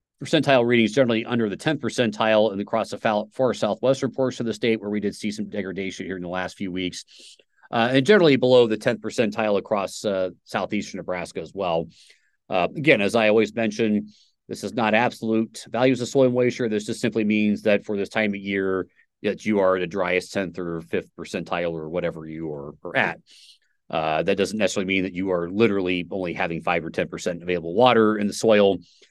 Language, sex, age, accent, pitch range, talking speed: English, male, 30-49, American, 95-120 Hz, 210 wpm